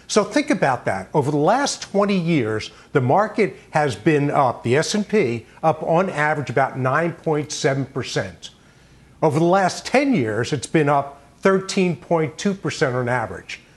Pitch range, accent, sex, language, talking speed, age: 145-205 Hz, American, male, English, 140 wpm, 50-69